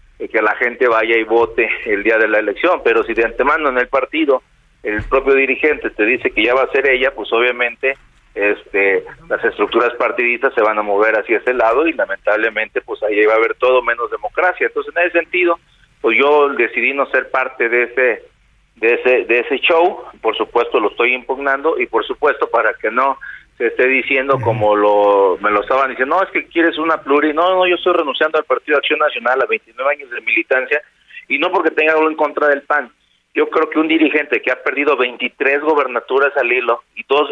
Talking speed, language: 215 wpm, Spanish